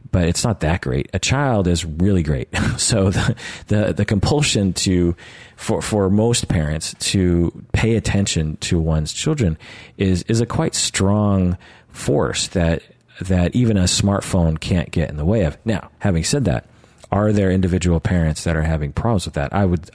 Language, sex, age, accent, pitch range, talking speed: English, male, 40-59, American, 85-110 Hz, 180 wpm